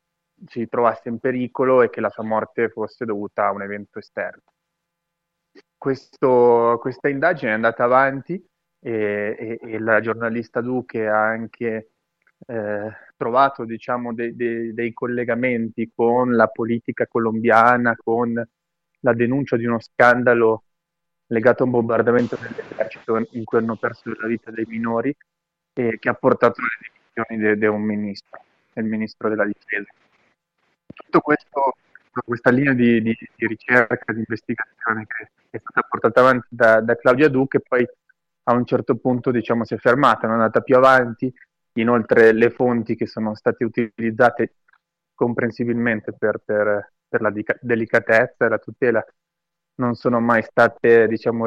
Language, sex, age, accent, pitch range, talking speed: Italian, male, 20-39, native, 115-130 Hz, 150 wpm